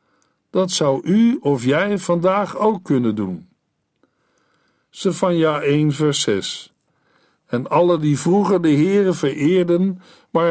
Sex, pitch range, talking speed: male, 145-195 Hz, 120 wpm